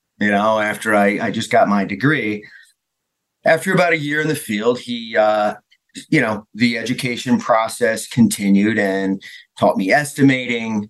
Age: 40-59